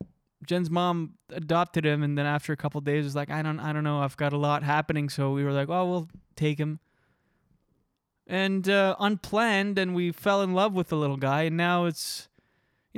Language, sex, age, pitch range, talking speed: English, male, 20-39, 150-185 Hz, 215 wpm